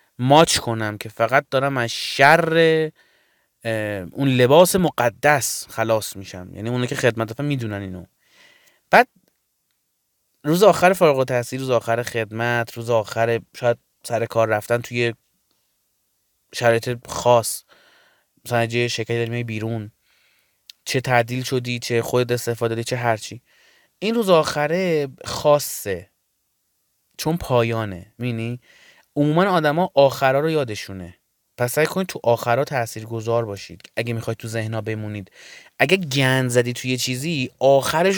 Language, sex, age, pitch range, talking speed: Persian, male, 30-49, 110-140 Hz, 130 wpm